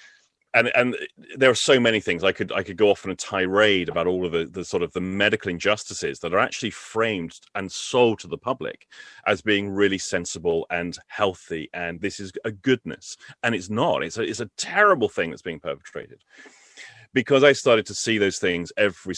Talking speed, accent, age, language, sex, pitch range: 205 wpm, British, 30-49, English, male, 85-105 Hz